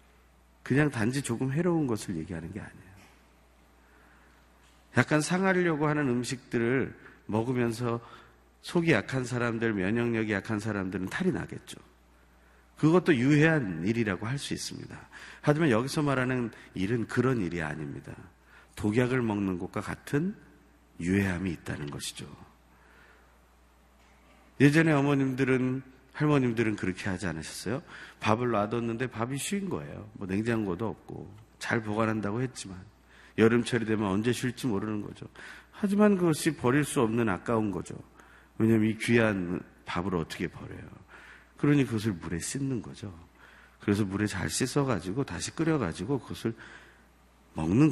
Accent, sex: native, male